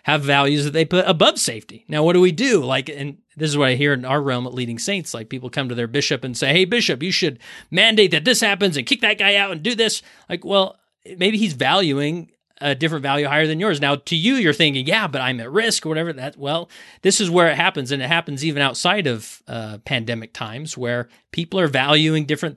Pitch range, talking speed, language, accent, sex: 125-165 Hz, 245 wpm, English, American, male